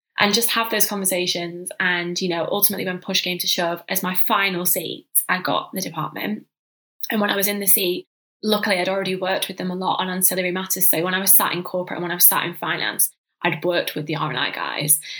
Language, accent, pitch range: English, British, 170-205 Hz